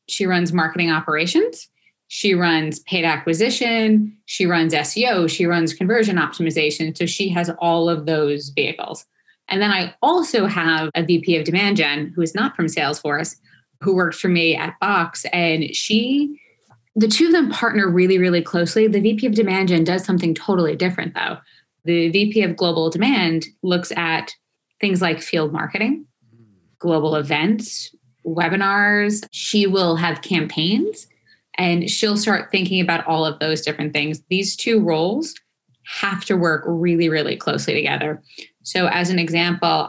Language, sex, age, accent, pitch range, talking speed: English, female, 20-39, American, 160-195 Hz, 160 wpm